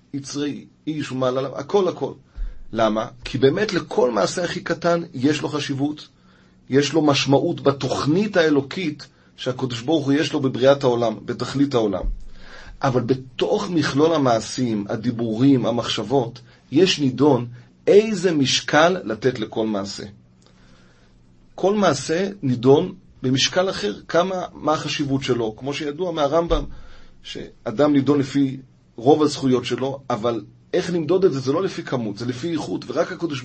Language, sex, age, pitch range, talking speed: Hebrew, male, 30-49, 120-155 Hz, 135 wpm